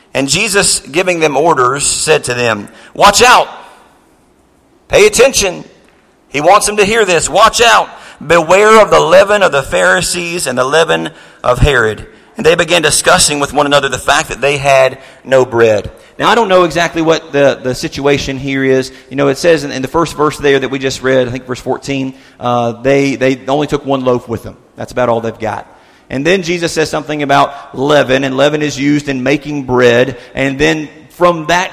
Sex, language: male, English